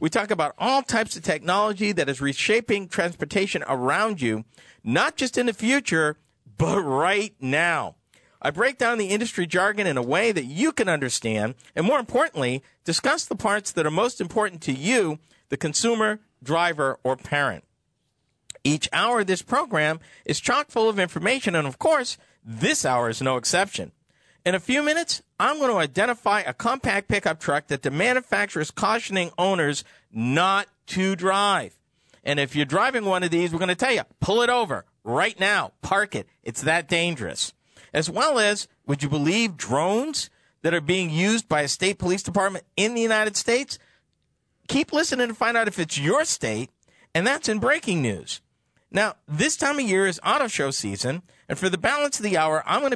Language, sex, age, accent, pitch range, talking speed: English, male, 50-69, American, 150-225 Hz, 185 wpm